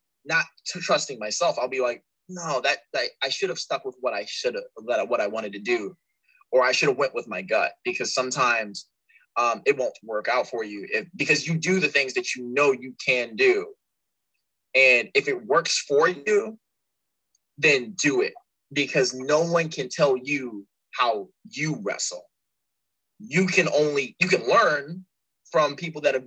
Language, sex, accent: English, male, American